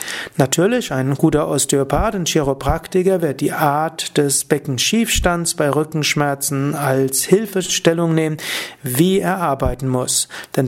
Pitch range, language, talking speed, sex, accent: 145-180 Hz, German, 120 wpm, male, German